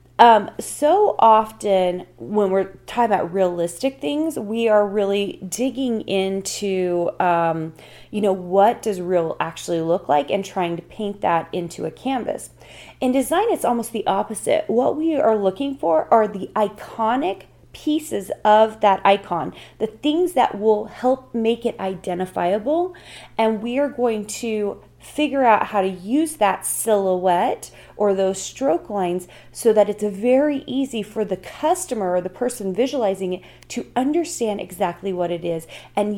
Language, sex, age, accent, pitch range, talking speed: English, female, 30-49, American, 185-245 Hz, 155 wpm